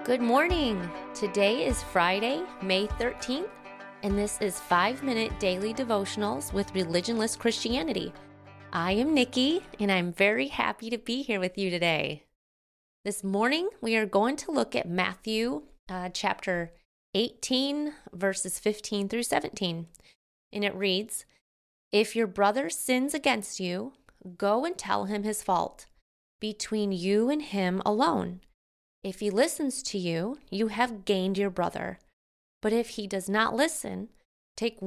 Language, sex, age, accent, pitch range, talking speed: English, female, 20-39, American, 185-245 Hz, 145 wpm